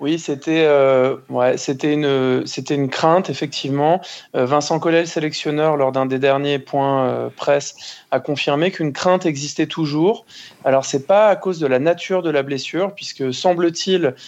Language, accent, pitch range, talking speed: French, French, 140-180 Hz, 175 wpm